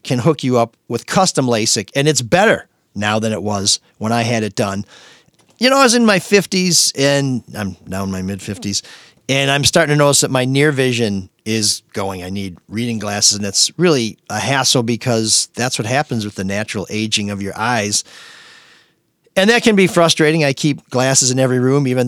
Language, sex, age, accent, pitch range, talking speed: English, male, 40-59, American, 110-155 Hz, 205 wpm